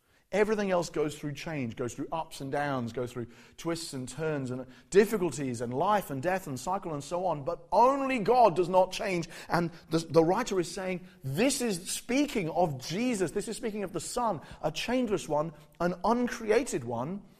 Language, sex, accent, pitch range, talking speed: English, male, British, 150-215 Hz, 190 wpm